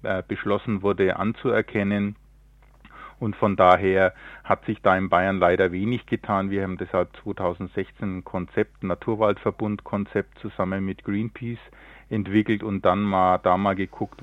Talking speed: 135 wpm